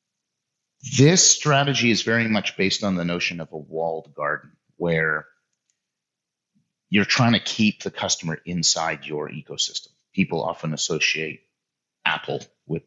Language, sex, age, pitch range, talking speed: Dutch, male, 30-49, 85-125 Hz, 130 wpm